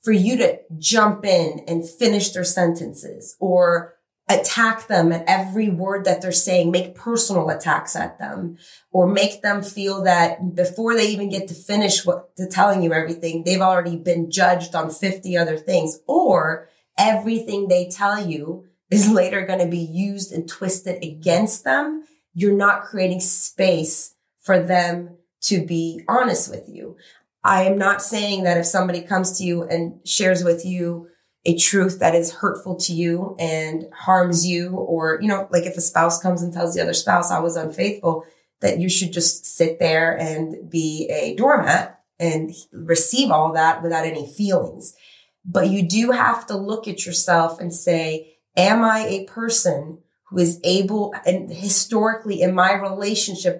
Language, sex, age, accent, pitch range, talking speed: English, female, 30-49, American, 170-195 Hz, 170 wpm